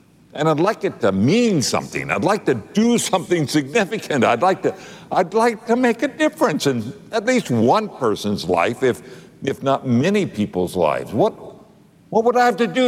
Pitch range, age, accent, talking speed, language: 120-195 Hz, 60-79, American, 190 wpm, English